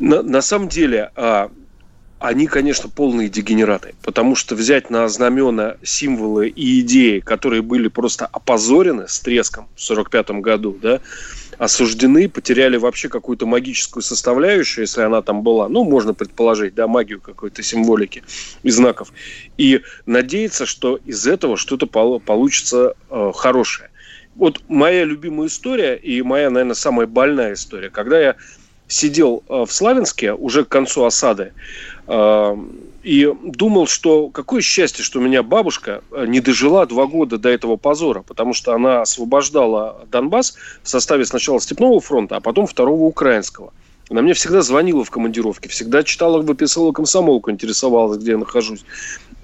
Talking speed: 140 wpm